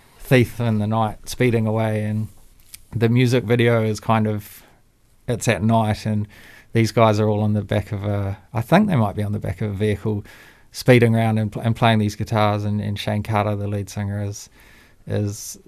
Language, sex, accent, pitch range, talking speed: English, male, Australian, 105-125 Hz, 205 wpm